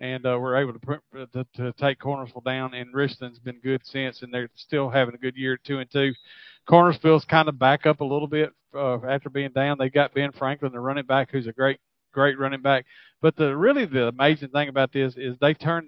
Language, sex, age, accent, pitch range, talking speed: English, male, 40-59, American, 125-145 Hz, 235 wpm